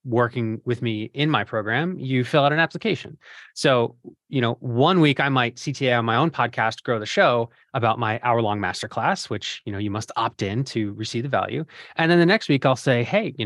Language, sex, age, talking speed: English, male, 30-49, 225 wpm